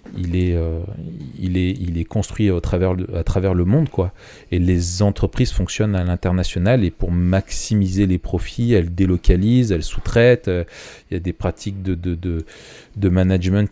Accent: French